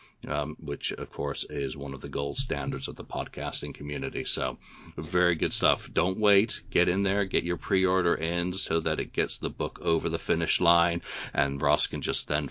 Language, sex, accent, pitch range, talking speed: English, male, American, 75-90 Hz, 200 wpm